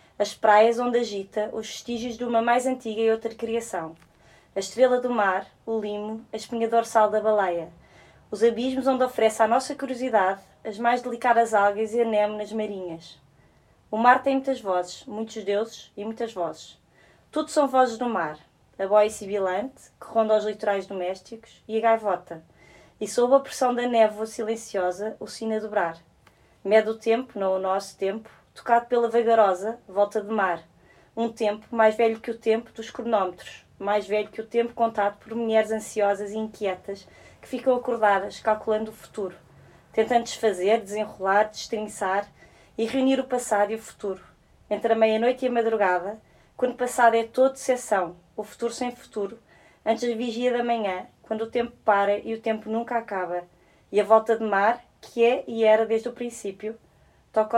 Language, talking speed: Portuguese, 175 wpm